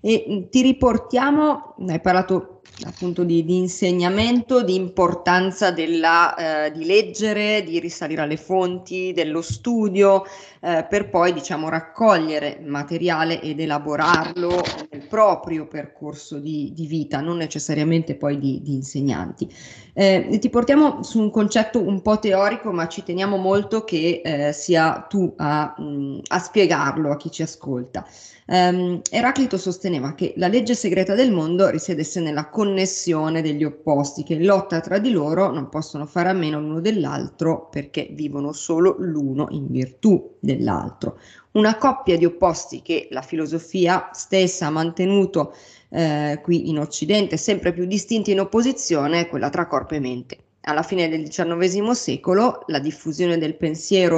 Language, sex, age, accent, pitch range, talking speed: Italian, female, 30-49, native, 155-195 Hz, 145 wpm